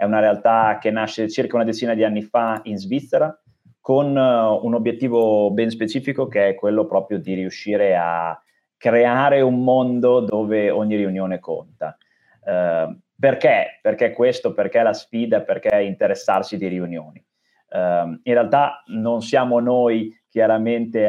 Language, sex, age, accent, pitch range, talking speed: Italian, male, 30-49, native, 100-125 Hz, 140 wpm